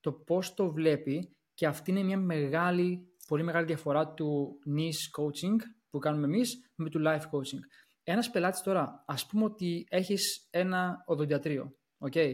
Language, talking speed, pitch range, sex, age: Greek, 150 wpm, 150-200 Hz, male, 20-39